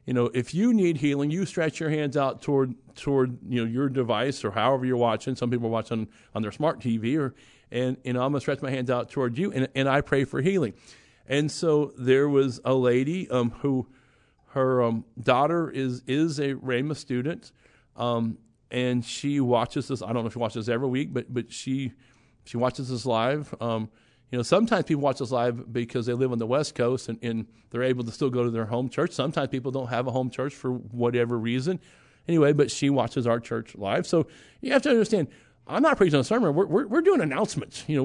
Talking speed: 225 wpm